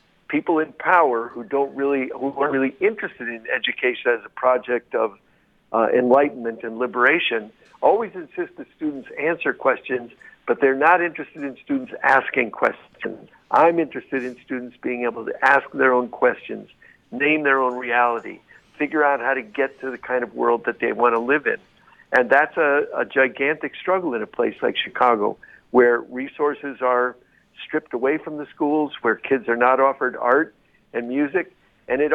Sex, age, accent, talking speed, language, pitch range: male, 60-79, American, 175 wpm, English, 125-160 Hz